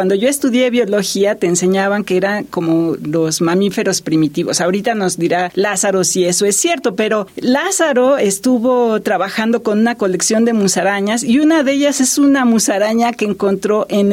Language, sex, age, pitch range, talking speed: Spanish, female, 40-59, 200-255 Hz, 165 wpm